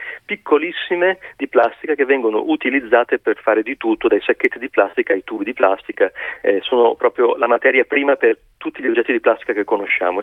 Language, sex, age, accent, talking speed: Italian, male, 40-59, native, 190 wpm